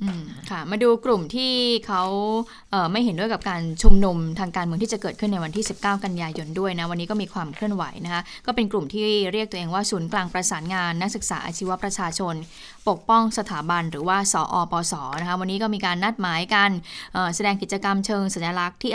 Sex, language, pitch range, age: female, Thai, 180-220 Hz, 20-39